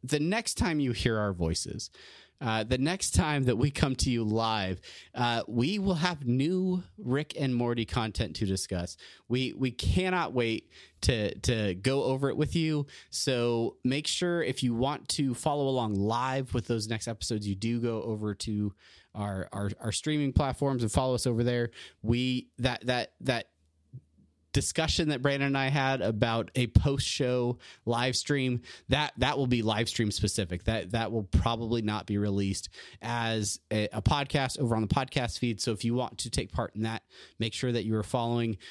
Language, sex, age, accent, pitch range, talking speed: English, male, 30-49, American, 110-130 Hz, 190 wpm